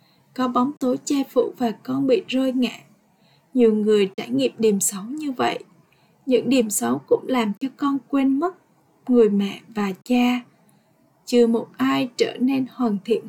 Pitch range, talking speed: 215-255 Hz, 170 wpm